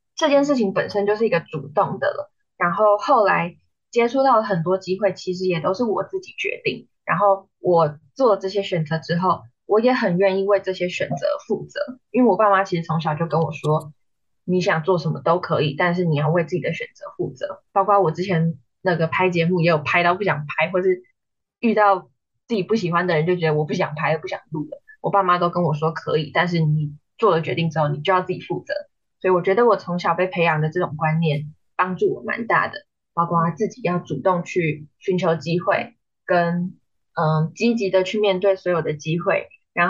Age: 10-29